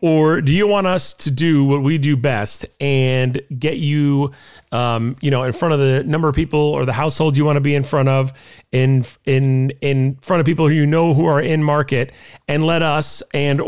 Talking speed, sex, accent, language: 225 wpm, male, American, English